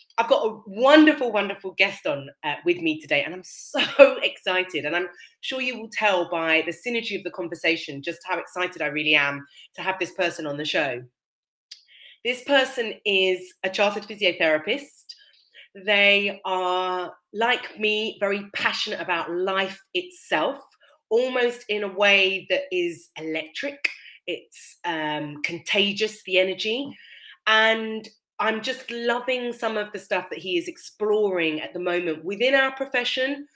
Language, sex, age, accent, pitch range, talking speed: English, female, 30-49, British, 180-245 Hz, 150 wpm